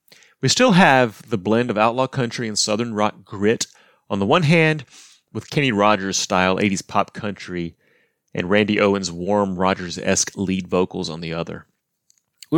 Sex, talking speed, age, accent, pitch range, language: male, 160 wpm, 30-49, American, 100-125 Hz, English